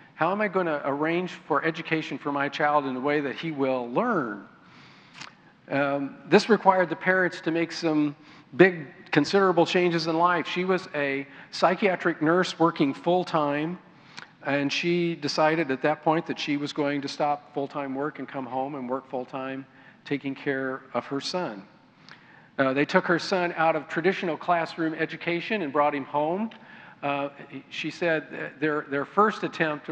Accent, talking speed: American, 170 wpm